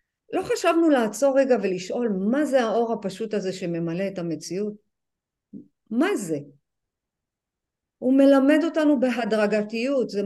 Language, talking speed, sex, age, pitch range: Hebrew, 115 wpm, female, 50-69, 185-235 Hz